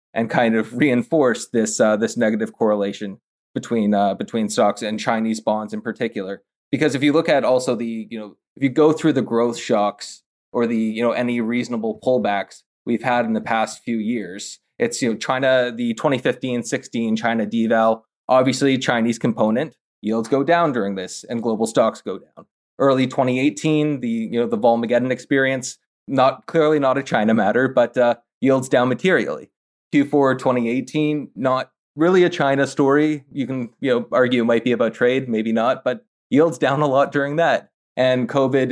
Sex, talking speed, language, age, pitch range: male, 180 wpm, English, 20-39, 115-135 Hz